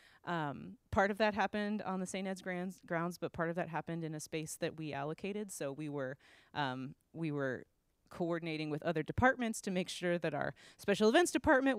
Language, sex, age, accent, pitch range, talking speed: English, female, 30-49, American, 155-195 Hz, 205 wpm